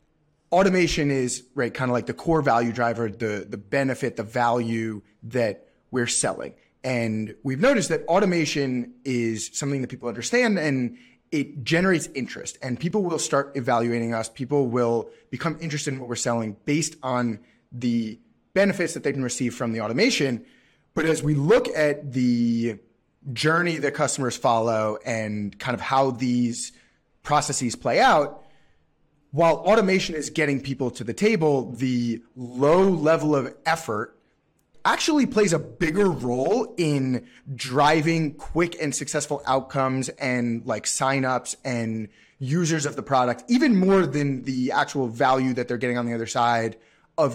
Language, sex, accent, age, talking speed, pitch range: English, male, American, 30-49, 155 wpm, 120-155 Hz